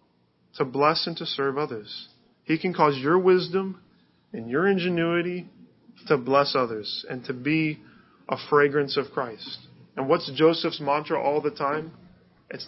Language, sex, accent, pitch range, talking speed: English, male, American, 135-165 Hz, 150 wpm